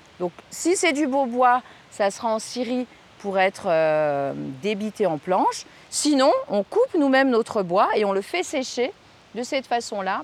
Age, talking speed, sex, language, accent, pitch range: 40-59, 175 wpm, female, French, French, 200-300 Hz